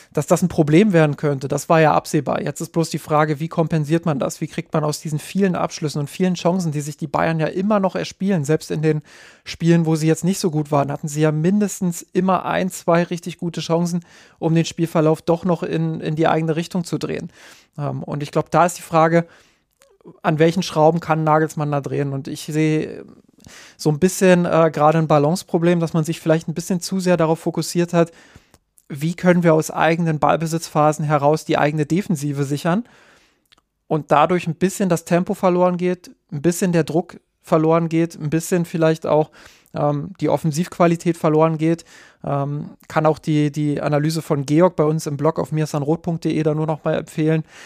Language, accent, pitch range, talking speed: German, German, 155-175 Hz, 200 wpm